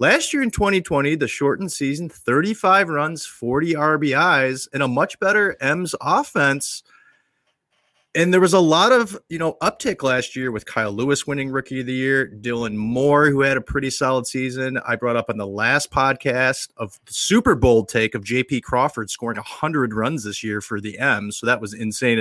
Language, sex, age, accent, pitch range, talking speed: English, male, 30-49, American, 120-175 Hz, 190 wpm